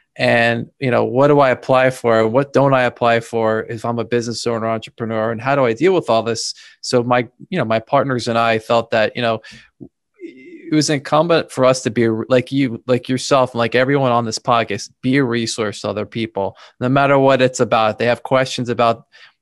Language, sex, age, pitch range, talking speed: English, male, 20-39, 115-135 Hz, 220 wpm